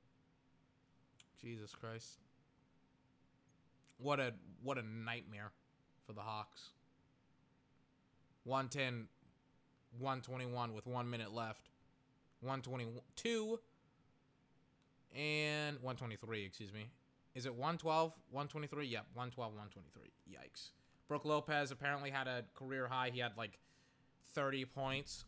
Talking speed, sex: 95 wpm, male